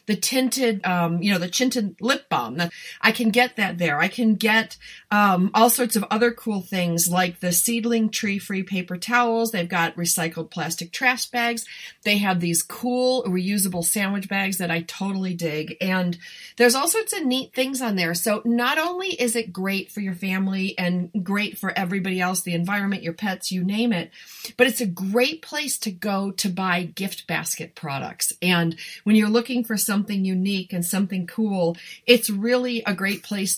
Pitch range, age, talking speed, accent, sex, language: 185-235 Hz, 40-59, 190 wpm, American, female, English